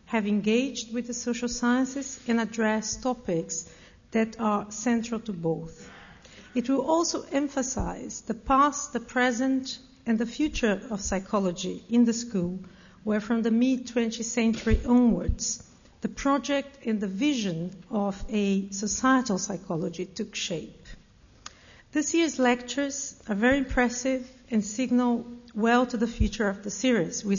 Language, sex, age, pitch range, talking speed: English, female, 50-69, 210-250 Hz, 140 wpm